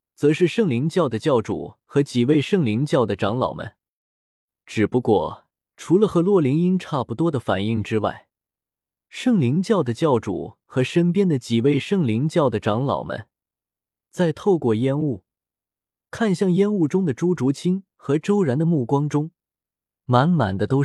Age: 20-39